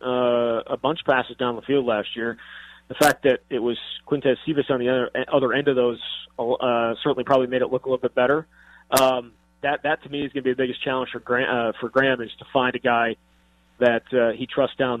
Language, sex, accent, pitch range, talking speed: English, male, American, 120-135 Hz, 245 wpm